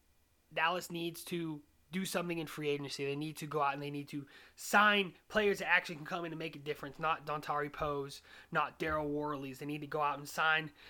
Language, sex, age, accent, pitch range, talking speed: English, male, 30-49, American, 135-180 Hz, 225 wpm